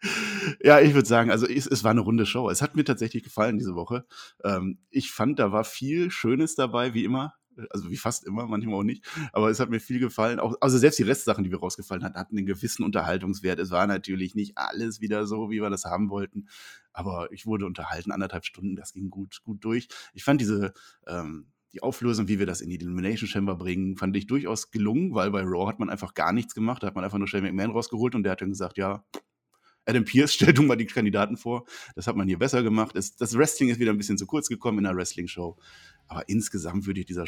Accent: German